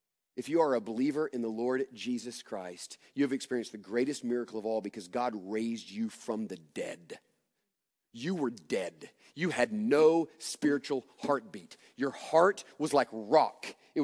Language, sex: English, male